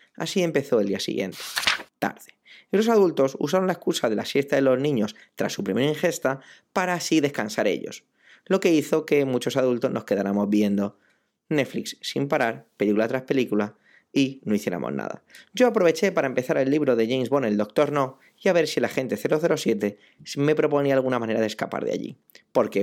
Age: 20-39